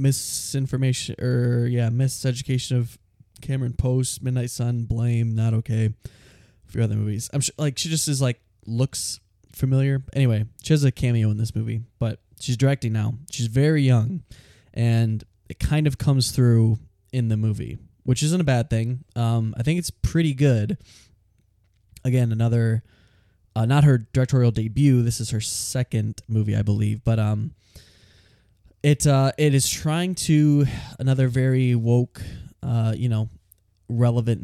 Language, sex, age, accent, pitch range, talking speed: English, male, 10-29, American, 110-130 Hz, 160 wpm